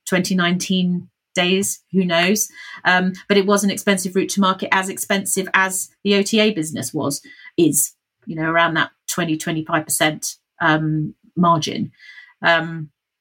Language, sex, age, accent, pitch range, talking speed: English, female, 40-59, British, 160-195 Hz, 135 wpm